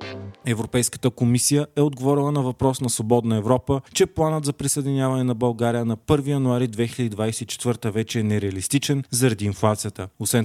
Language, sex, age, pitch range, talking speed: Bulgarian, male, 30-49, 110-135 Hz, 145 wpm